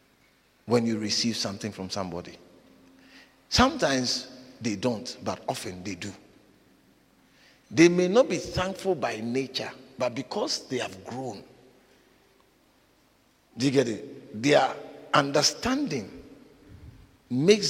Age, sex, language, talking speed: 50-69, male, English, 110 wpm